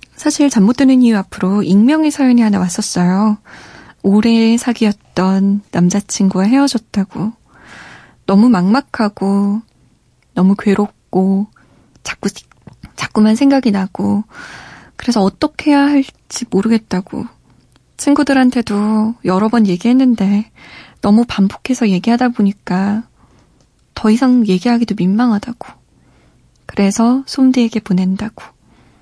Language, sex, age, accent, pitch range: Korean, female, 20-39, native, 195-245 Hz